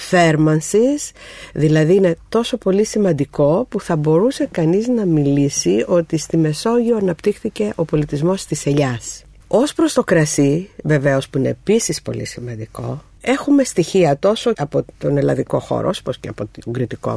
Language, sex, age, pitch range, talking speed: Greek, female, 50-69, 130-190 Hz, 145 wpm